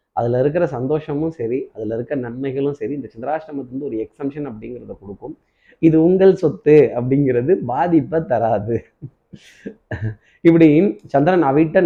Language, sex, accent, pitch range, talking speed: Tamil, male, native, 130-160 Hz, 115 wpm